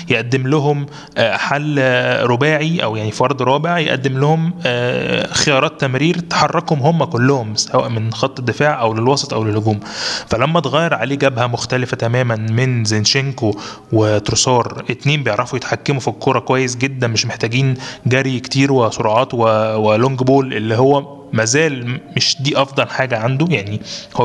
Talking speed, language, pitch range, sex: 140 wpm, Arabic, 120-145 Hz, male